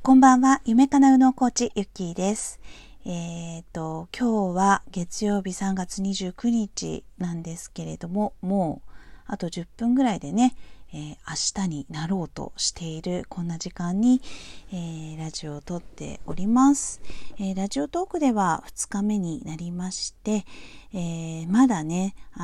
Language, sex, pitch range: Japanese, female, 170-225 Hz